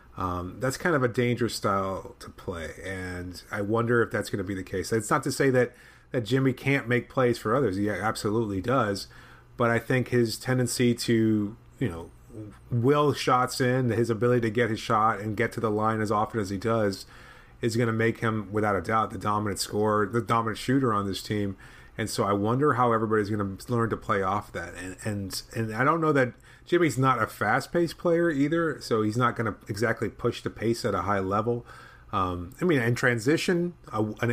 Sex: male